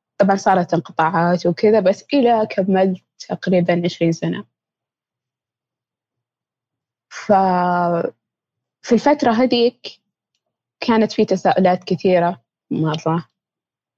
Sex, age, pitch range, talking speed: female, 20-39, 180-225 Hz, 80 wpm